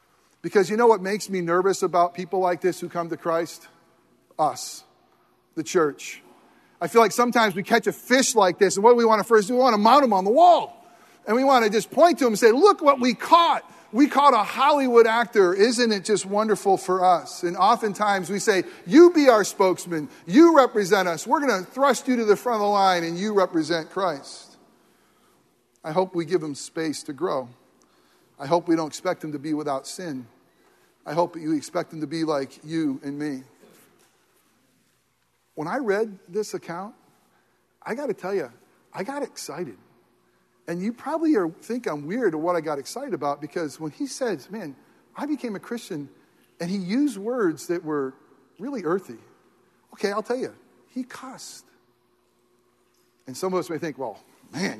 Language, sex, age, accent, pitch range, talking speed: English, male, 40-59, American, 165-235 Hz, 195 wpm